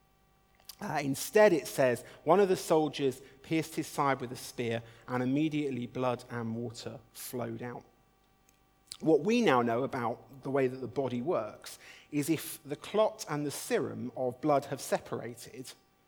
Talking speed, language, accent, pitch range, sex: 160 wpm, English, British, 125-165 Hz, male